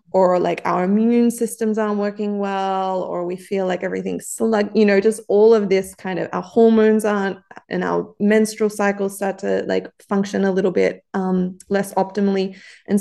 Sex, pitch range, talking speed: female, 180-205 Hz, 185 wpm